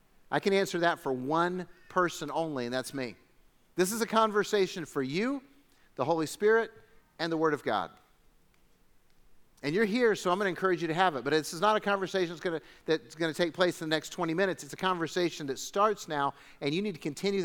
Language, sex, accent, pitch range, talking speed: English, male, American, 150-200 Hz, 220 wpm